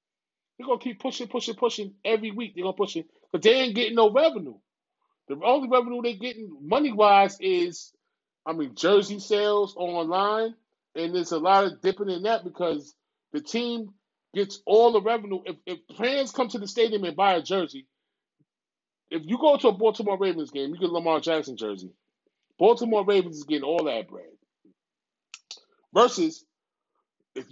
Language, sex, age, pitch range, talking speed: English, male, 30-49, 155-245 Hz, 175 wpm